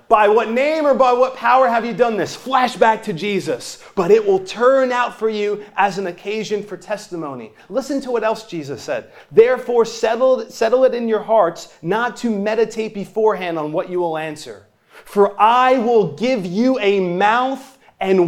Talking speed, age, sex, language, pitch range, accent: 185 wpm, 30-49, male, English, 195-260 Hz, American